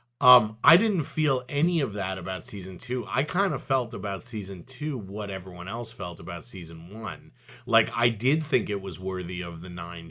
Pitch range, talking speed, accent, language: 100-130 Hz, 200 wpm, American, English